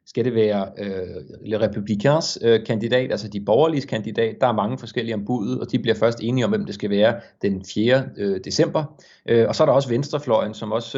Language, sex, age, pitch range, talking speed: Danish, male, 30-49, 110-135 Hz, 215 wpm